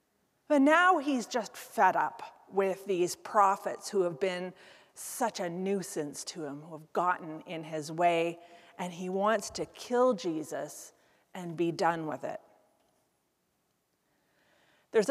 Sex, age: female, 40-59